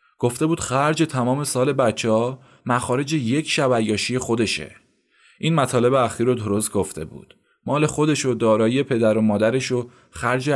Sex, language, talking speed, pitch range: male, Persian, 150 wpm, 110-135 Hz